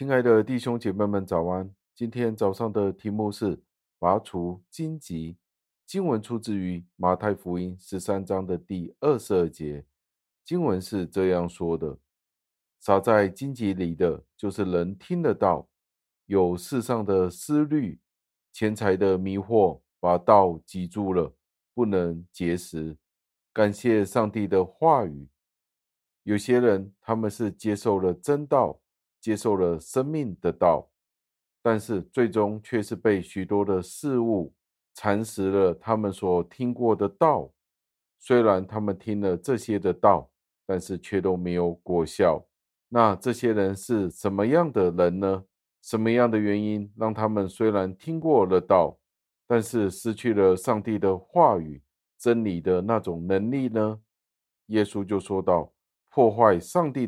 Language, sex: Chinese, male